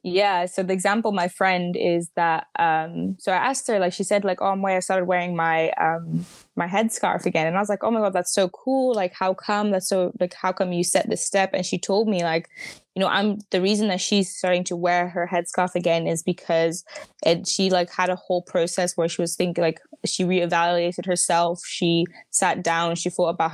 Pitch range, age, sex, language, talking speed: 170-190 Hz, 20-39, female, English, 230 wpm